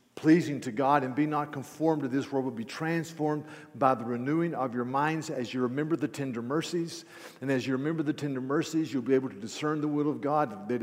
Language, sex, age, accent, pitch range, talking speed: English, male, 50-69, American, 130-155 Hz, 235 wpm